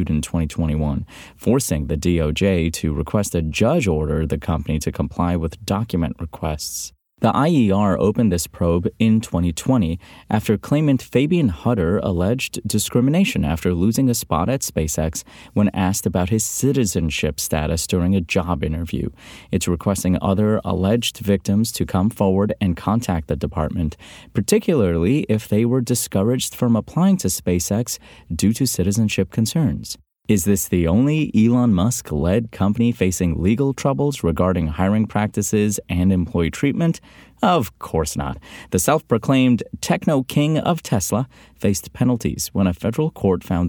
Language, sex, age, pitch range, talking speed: English, male, 30-49, 85-115 Hz, 140 wpm